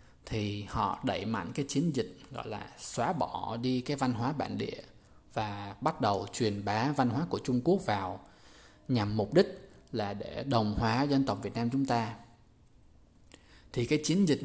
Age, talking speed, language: 20-39, 185 wpm, Vietnamese